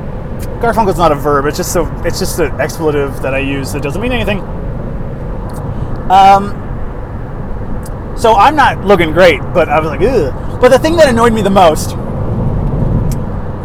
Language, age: English, 30-49